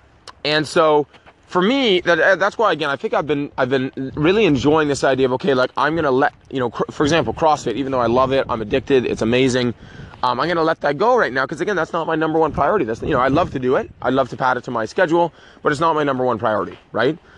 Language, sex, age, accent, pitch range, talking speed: English, male, 20-39, American, 130-160 Hz, 275 wpm